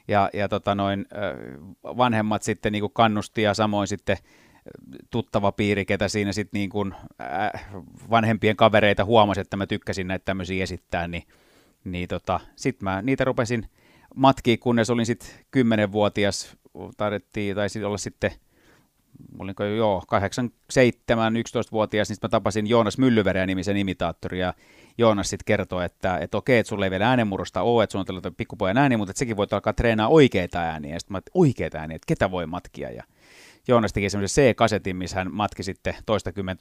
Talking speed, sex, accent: 165 wpm, male, native